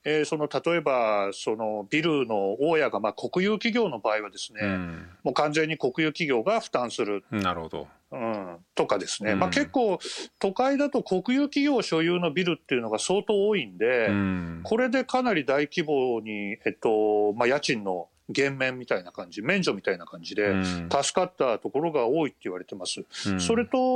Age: 40-59